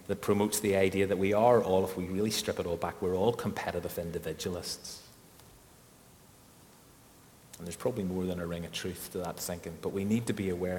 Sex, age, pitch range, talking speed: male, 30-49, 95-105 Hz, 205 wpm